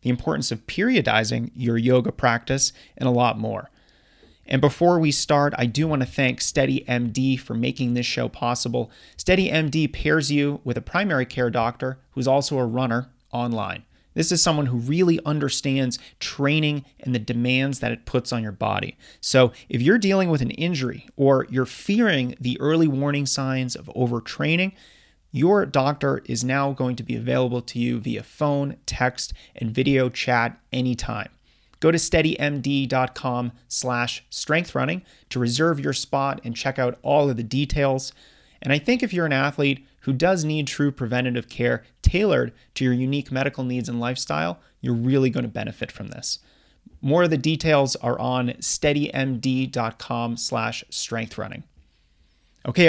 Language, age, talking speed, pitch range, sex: English, 30-49, 160 wpm, 120-145 Hz, male